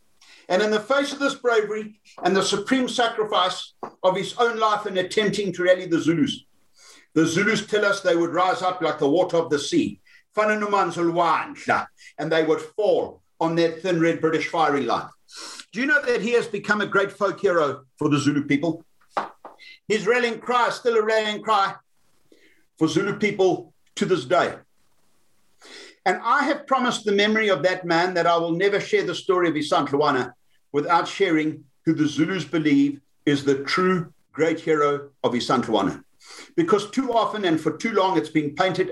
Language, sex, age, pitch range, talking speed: English, male, 60-79, 155-215 Hz, 180 wpm